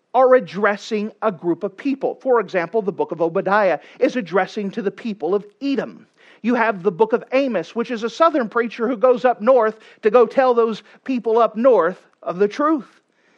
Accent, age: American, 40-59